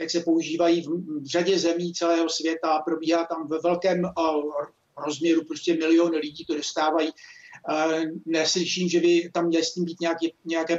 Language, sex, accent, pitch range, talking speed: Czech, male, native, 170-195 Hz, 160 wpm